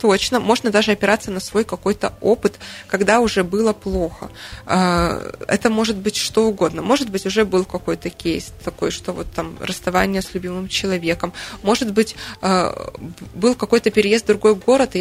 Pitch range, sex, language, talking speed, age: 185-220 Hz, female, Russian, 160 wpm, 20-39